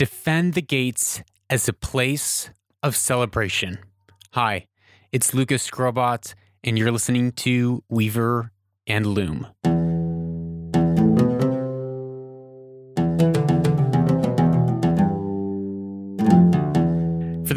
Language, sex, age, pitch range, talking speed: English, male, 20-39, 105-145 Hz, 70 wpm